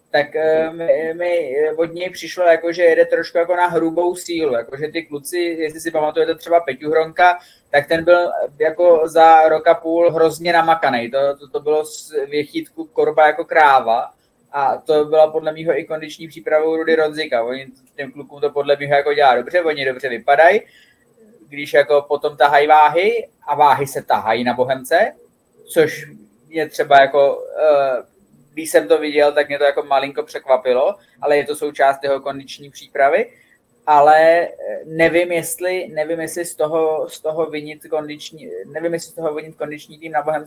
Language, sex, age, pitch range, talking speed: Czech, male, 20-39, 145-170 Hz, 175 wpm